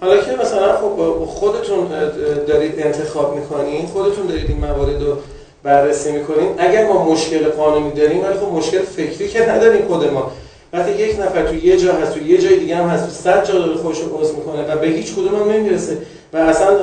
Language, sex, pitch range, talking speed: Persian, male, 155-200 Hz, 180 wpm